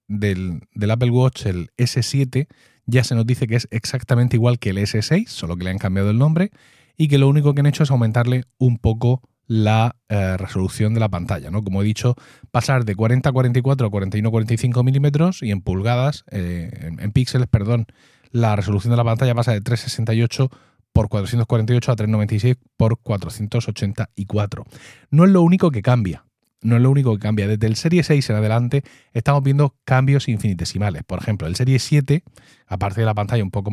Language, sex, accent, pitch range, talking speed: Spanish, male, Spanish, 105-130 Hz, 190 wpm